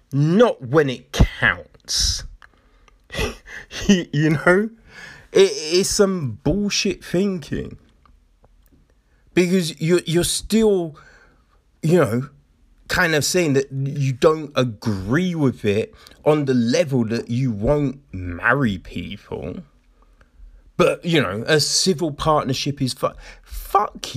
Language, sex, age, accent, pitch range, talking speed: English, male, 30-49, British, 130-190 Hz, 100 wpm